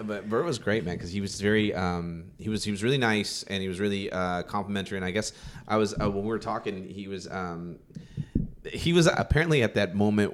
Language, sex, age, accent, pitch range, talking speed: English, male, 30-49, American, 95-115 Hz, 220 wpm